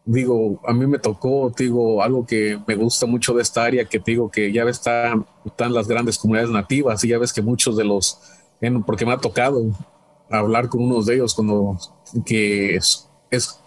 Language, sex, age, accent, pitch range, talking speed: English, male, 40-59, Mexican, 110-125 Hz, 195 wpm